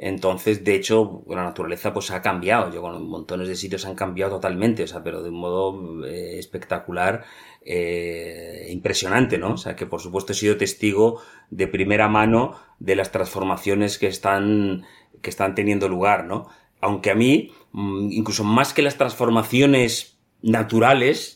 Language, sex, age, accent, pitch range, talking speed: Spanish, male, 30-49, Spanish, 95-110 Hz, 160 wpm